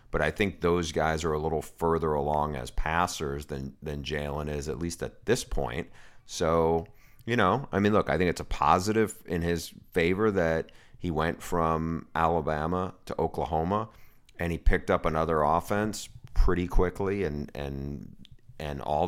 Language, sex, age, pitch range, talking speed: English, male, 30-49, 75-85 Hz, 170 wpm